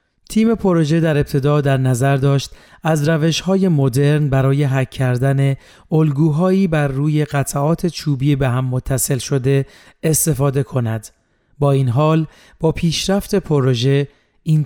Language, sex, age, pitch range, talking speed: Persian, male, 30-49, 135-160 Hz, 130 wpm